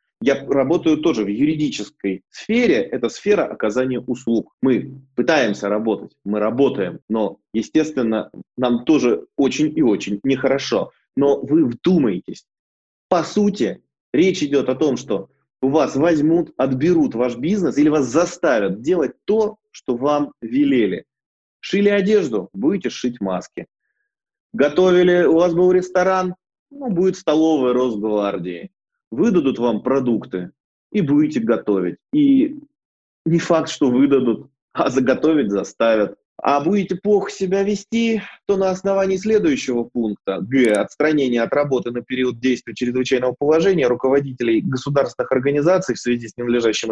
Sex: male